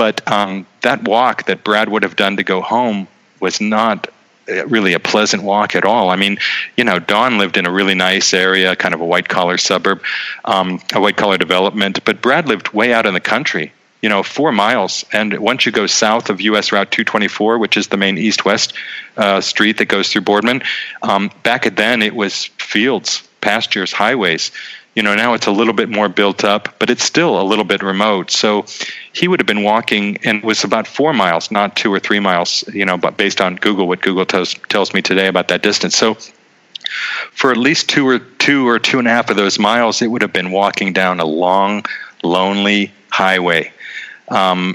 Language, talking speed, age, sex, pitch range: English, 205 wpm, 40-59, male, 95-105 Hz